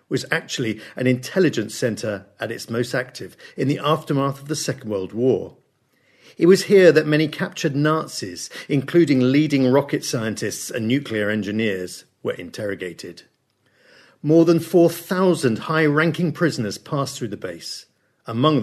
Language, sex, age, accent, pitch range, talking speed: English, male, 50-69, British, 115-165 Hz, 140 wpm